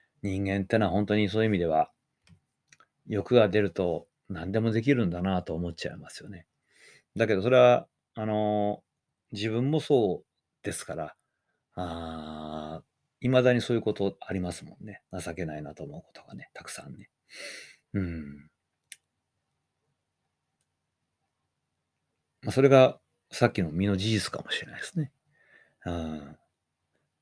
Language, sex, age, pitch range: Japanese, male, 40-59, 85-120 Hz